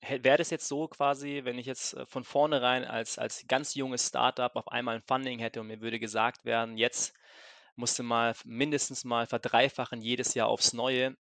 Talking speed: 190 wpm